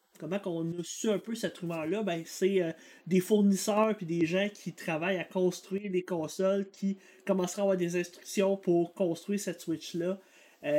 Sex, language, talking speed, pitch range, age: male, French, 185 wpm, 160-200 Hz, 30-49